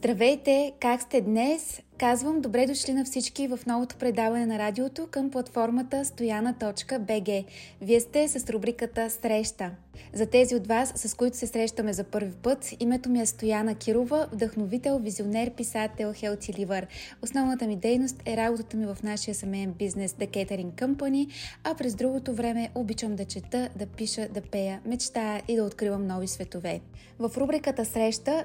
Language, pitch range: Bulgarian, 215-250 Hz